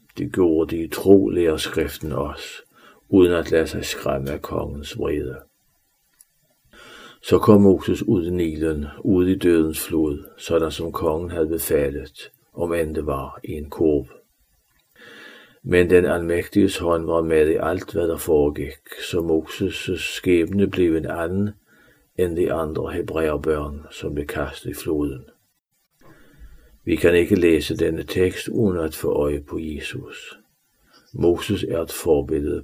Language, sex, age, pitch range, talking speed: Danish, male, 60-79, 75-90 Hz, 145 wpm